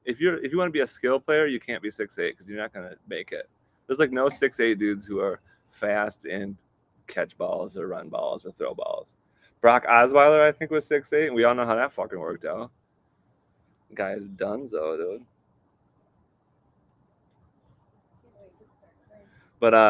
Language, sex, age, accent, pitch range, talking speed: English, male, 20-39, American, 105-150 Hz, 200 wpm